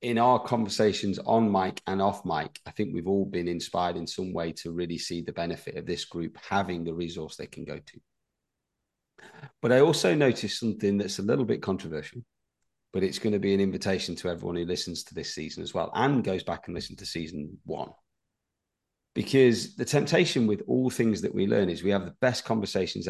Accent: British